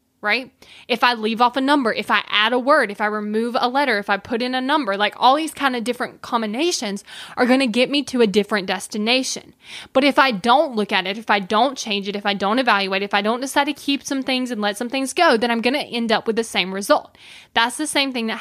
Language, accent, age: English, American, 10-29